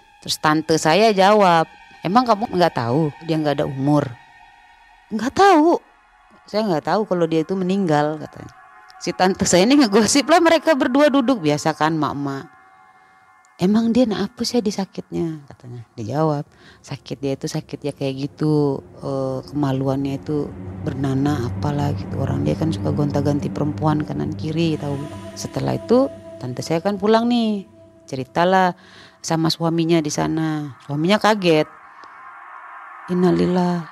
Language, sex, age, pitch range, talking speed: Indonesian, female, 30-49, 145-205 Hz, 140 wpm